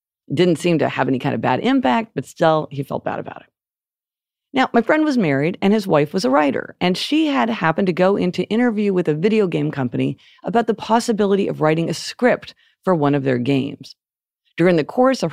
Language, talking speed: English, 220 wpm